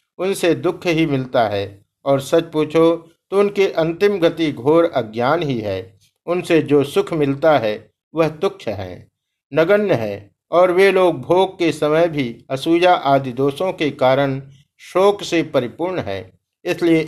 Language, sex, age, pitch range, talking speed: Hindi, male, 50-69, 140-175 Hz, 150 wpm